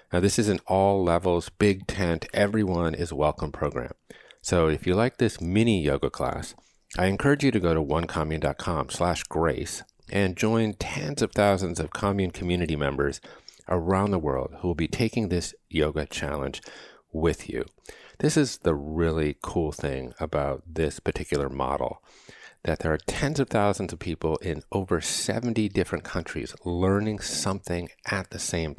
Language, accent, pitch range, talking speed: English, American, 80-100 Hz, 160 wpm